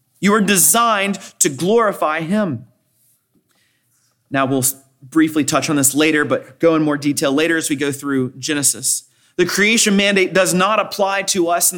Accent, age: American, 30-49